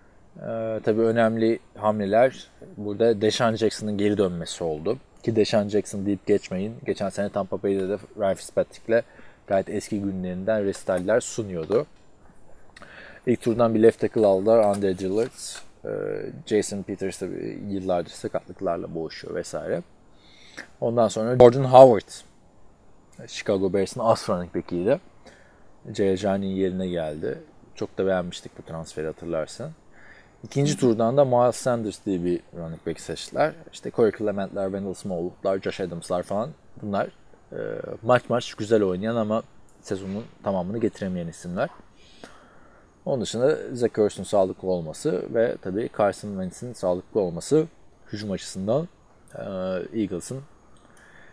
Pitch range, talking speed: 95-115 Hz, 120 wpm